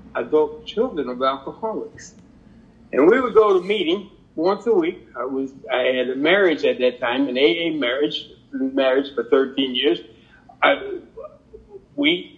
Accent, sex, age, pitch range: American, male, 60-79, 150-215 Hz